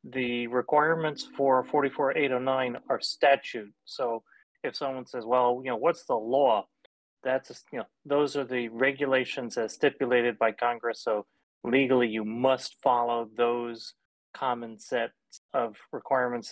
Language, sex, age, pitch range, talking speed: English, male, 30-49, 115-135 Hz, 135 wpm